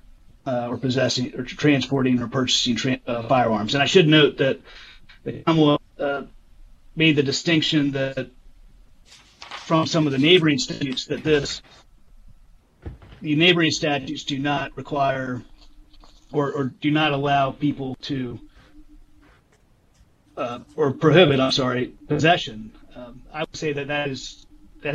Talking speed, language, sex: 130 wpm, English, male